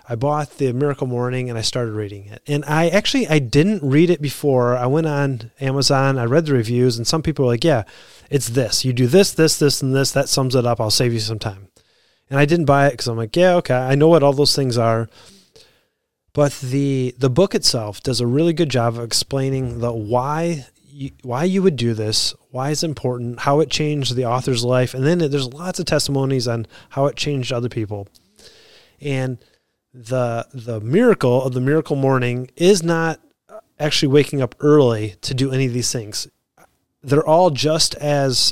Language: English